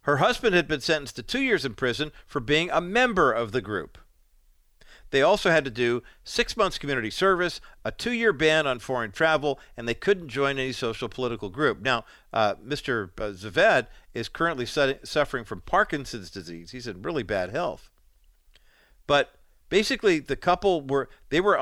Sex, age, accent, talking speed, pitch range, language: male, 50-69, American, 170 wpm, 115-165 Hz, English